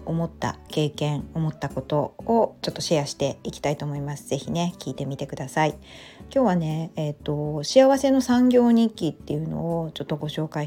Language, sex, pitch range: Japanese, female, 150-220 Hz